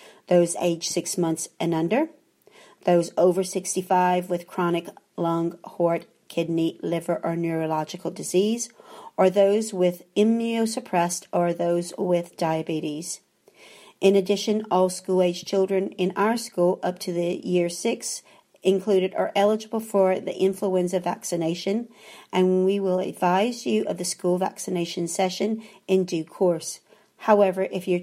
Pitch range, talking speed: 175-200 Hz, 135 wpm